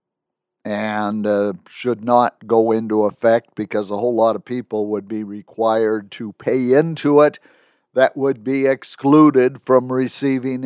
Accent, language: American, English